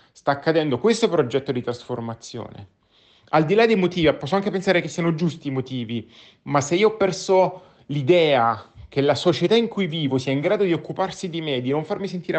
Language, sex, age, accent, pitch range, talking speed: Italian, male, 30-49, native, 125-155 Hz, 205 wpm